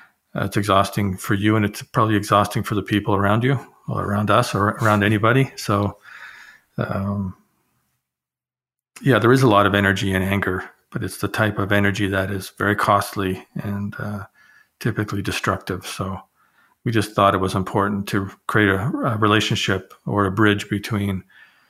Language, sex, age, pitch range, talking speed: English, male, 40-59, 100-110 Hz, 165 wpm